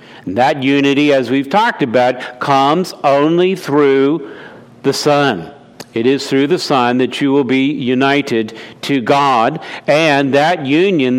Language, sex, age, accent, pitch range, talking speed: English, male, 50-69, American, 135-170 Hz, 140 wpm